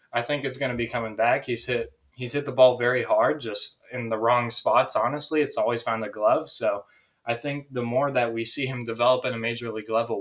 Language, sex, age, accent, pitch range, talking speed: English, male, 20-39, American, 115-135 Hz, 240 wpm